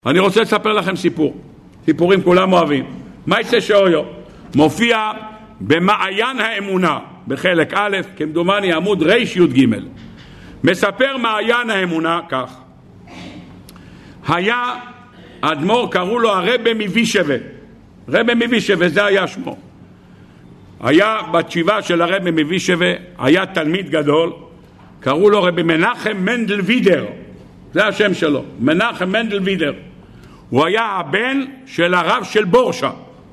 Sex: male